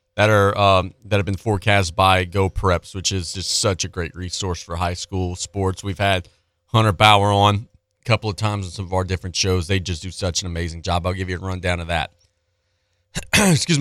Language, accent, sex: English, American, male